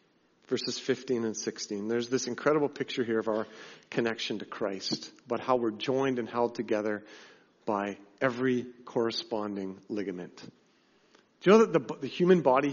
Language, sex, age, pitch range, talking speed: English, male, 40-59, 130-175 Hz, 155 wpm